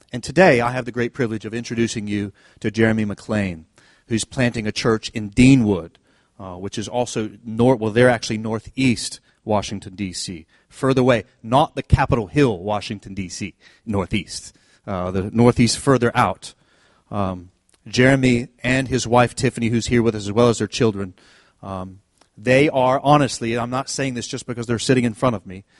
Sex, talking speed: male, 175 wpm